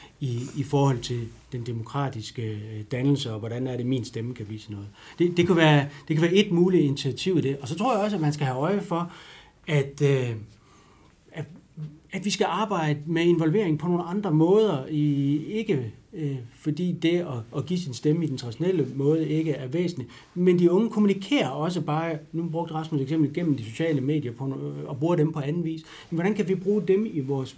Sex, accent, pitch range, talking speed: male, native, 125-165 Hz, 200 wpm